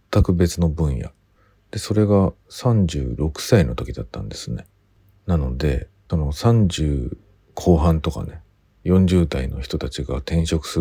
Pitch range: 75-100 Hz